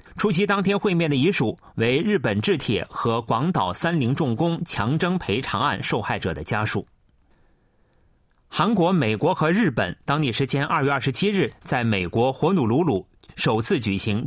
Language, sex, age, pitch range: Chinese, male, 30-49, 120-175 Hz